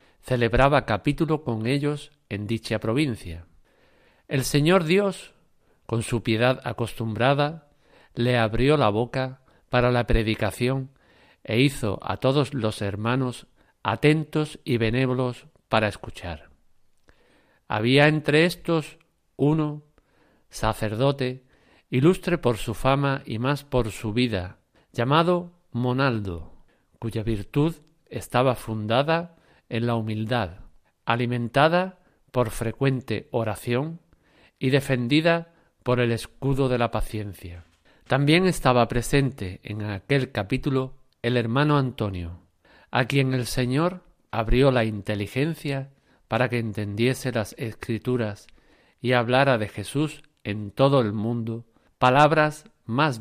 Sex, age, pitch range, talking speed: male, 50-69, 110-140 Hz, 110 wpm